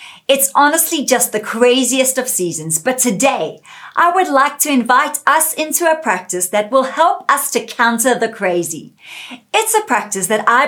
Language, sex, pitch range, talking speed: English, female, 200-295 Hz, 175 wpm